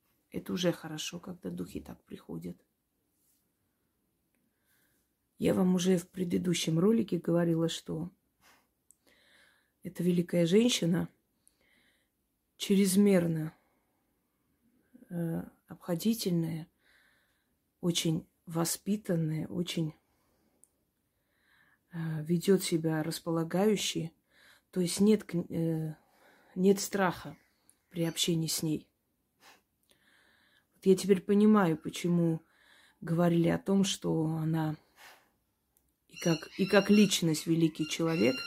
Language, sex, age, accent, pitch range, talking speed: Russian, female, 30-49, native, 160-185 Hz, 80 wpm